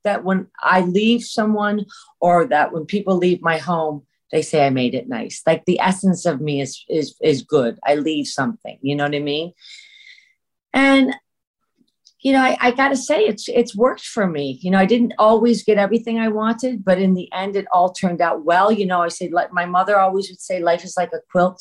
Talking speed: 220 wpm